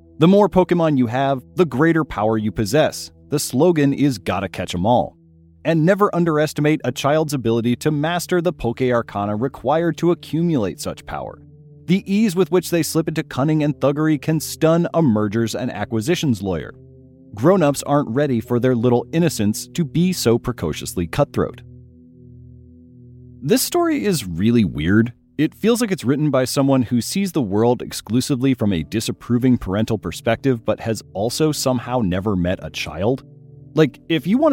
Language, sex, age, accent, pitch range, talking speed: English, male, 30-49, American, 105-150 Hz, 165 wpm